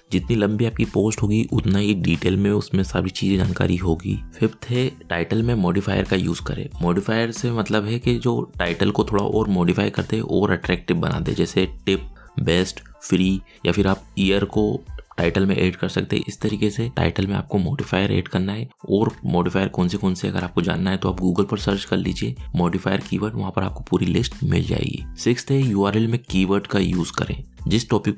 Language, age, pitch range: Hindi, 20-39, 90-110 Hz